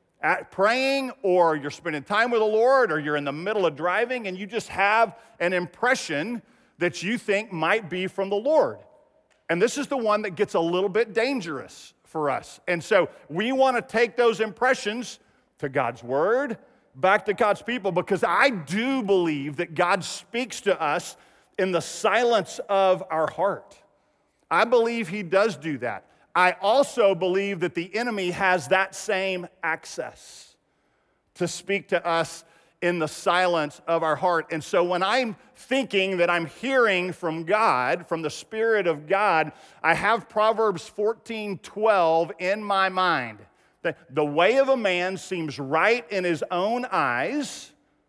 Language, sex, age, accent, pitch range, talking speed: English, male, 50-69, American, 170-225 Hz, 165 wpm